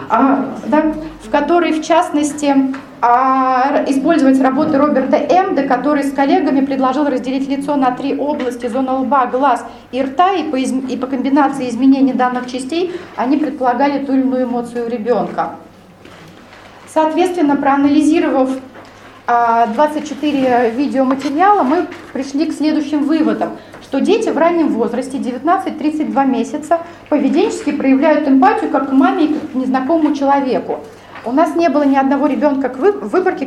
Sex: female